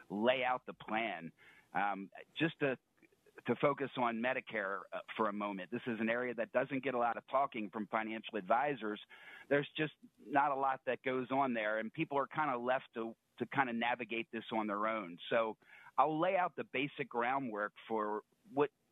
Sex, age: male, 40-59